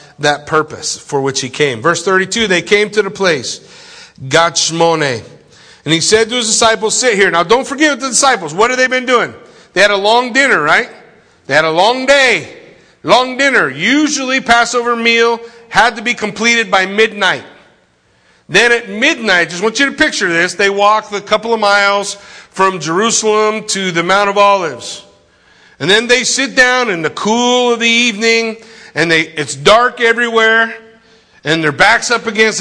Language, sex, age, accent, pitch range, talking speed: English, male, 50-69, American, 155-235 Hz, 180 wpm